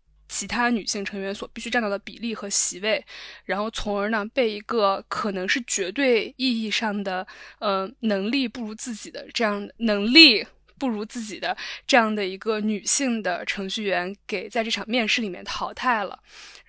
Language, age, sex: Chinese, 10-29, female